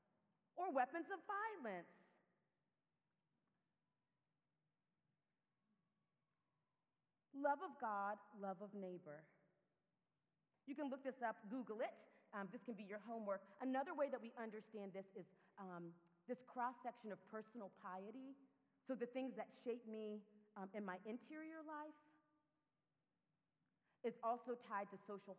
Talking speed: 125 wpm